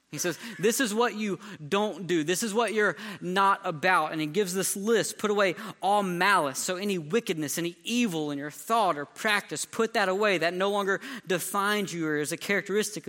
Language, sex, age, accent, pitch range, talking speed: English, male, 20-39, American, 175-215 Hz, 205 wpm